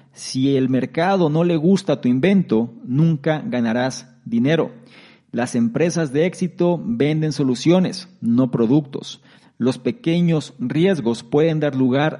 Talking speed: 125 wpm